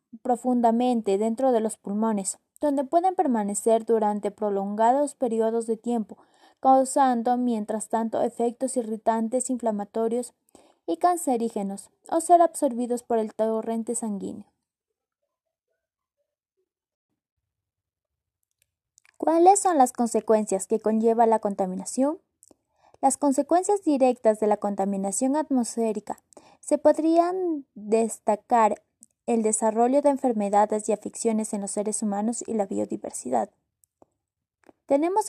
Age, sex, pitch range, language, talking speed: 20-39, female, 220-275 Hz, Spanish, 100 wpm